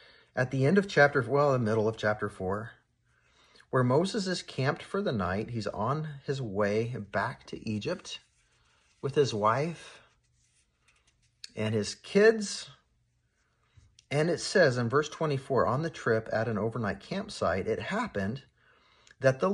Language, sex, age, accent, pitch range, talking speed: English, male, 40-59, American, 105-145 Hz, 145 wpm